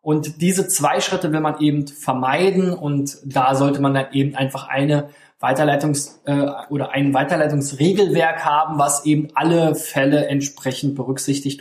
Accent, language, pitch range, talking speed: German, German, 140-170 Hz, 145 wpm